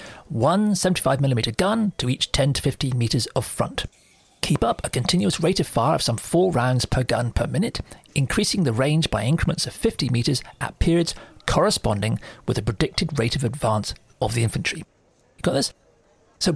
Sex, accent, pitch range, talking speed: male, British, 120-170 Hz, 185 wpm